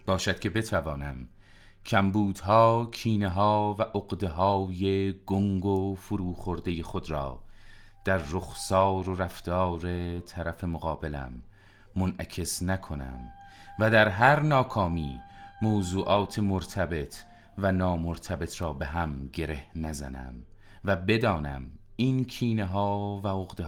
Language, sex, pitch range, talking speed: Persian, male, 85-100 Hz, 100 wpm